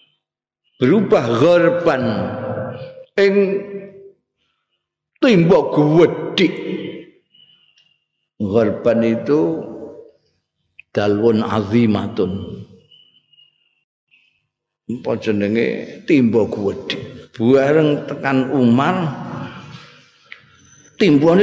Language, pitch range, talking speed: Indonesian, 105-145 Hz, 50 wpm